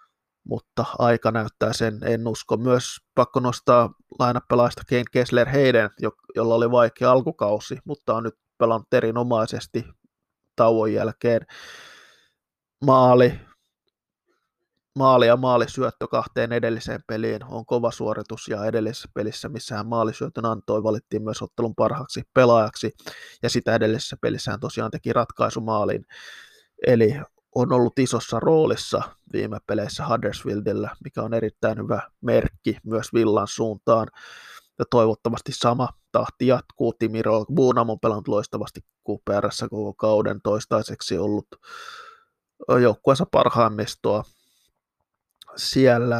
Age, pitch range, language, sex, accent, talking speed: 20-39, 110-125 Hz, Finnish, male, native, 110 wpm